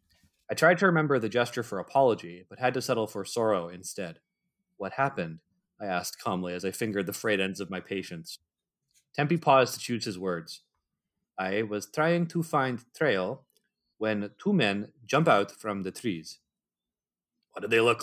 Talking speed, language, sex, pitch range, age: 175 wpm, English, male, 95-140 Hz, 30-49